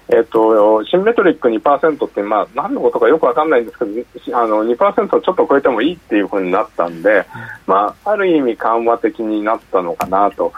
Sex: male